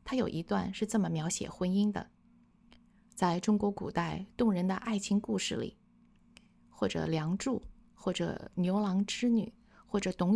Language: Chinese